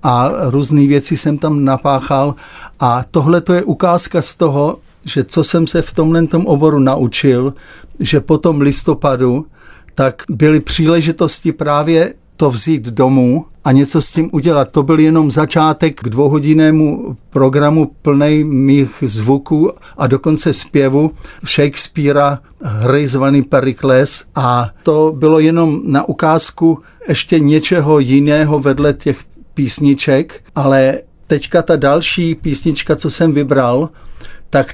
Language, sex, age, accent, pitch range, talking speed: Czech, male, 60-79, native, 140-160 Hz, 130 wpm